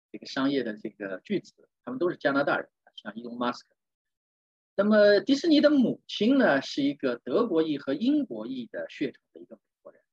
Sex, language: male, Chinese